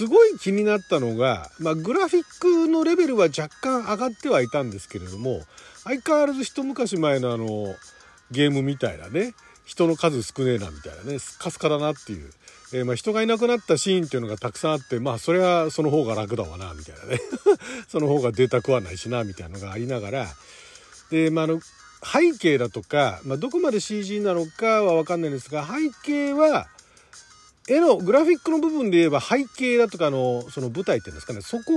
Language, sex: Japanese, male